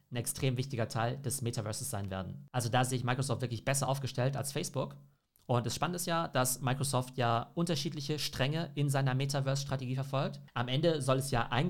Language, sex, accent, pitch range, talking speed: German, male, German, 120-140 Hz, 195 wpm